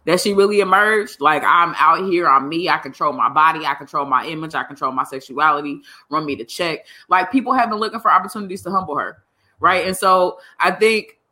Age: 20-39